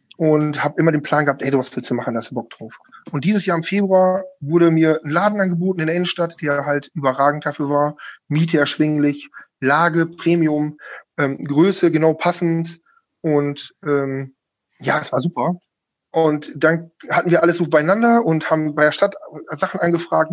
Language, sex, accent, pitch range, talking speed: German, male, German, 155-190 Hz, 180 wpm